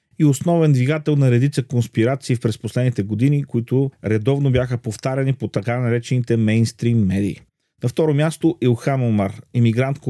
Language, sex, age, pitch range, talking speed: Bulgarian, male, 40-59, 115-150 Hz, 145 wpm